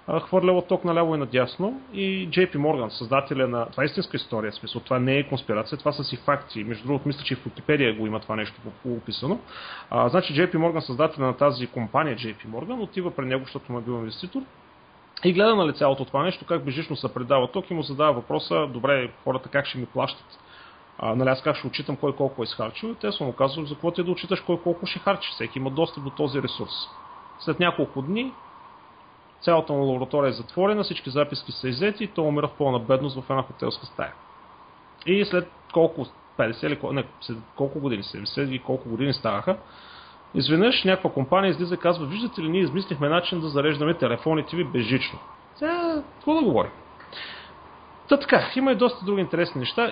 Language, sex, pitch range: Bulgarian, male, 130-185 Hz